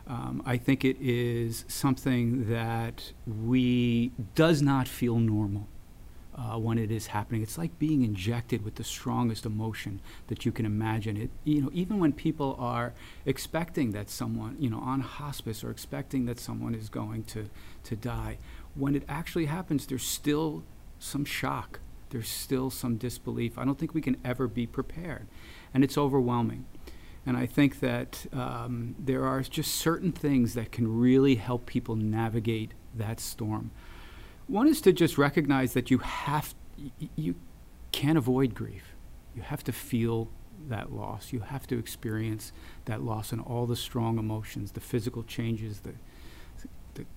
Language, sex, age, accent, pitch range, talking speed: English, male, 40-59, American, 110-135 Hz, 165 wpm